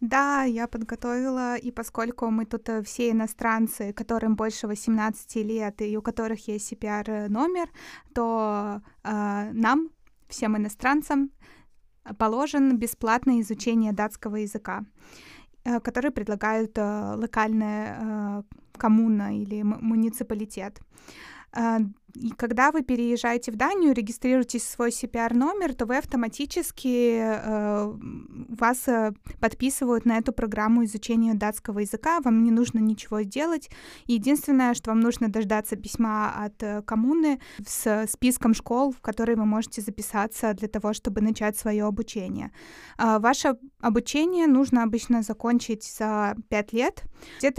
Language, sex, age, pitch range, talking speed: Russian, female, 20-39, 215-240 Hz, 125 wpm